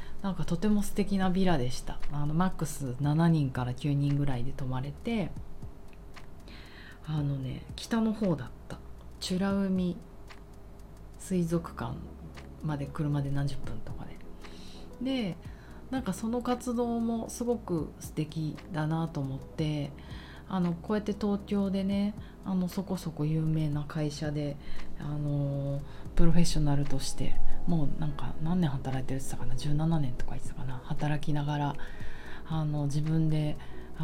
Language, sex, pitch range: Japanese, female, 135-175 Hz